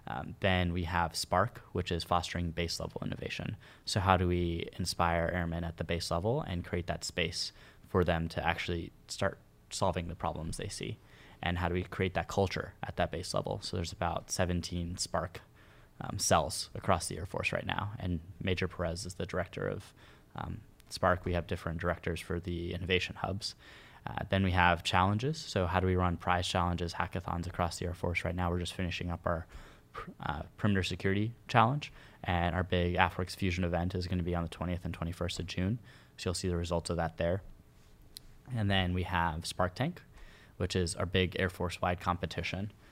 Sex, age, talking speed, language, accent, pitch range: male, 10-29, 195 wpm, English, American, 85-95 Hz